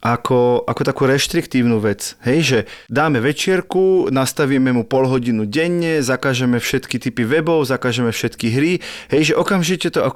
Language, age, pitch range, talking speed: Slovak, 30-49, 120-145 Hz, 155 wpm